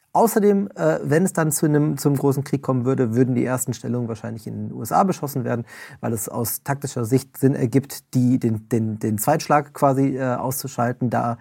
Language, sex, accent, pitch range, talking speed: German, male, German, 130-155 Hz, 200 wpm